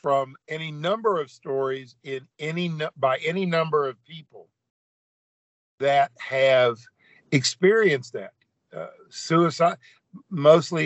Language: English